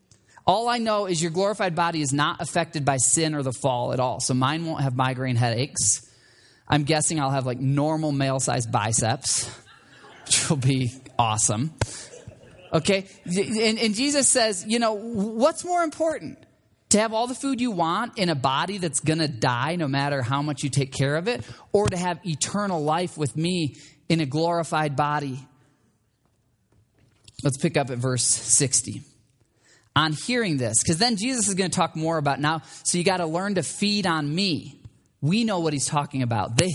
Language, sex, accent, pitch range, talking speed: English, male, American, 130-175 Hz, 185 wpm